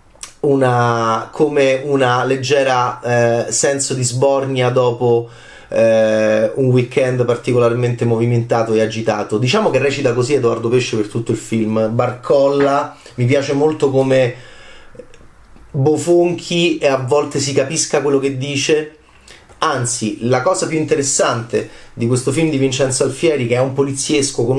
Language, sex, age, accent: Italian, male, 30-49, native